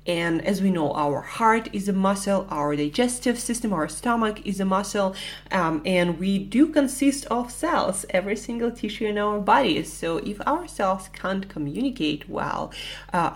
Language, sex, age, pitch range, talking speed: English, female, 20-39, 155-215 Hz, 170 wpm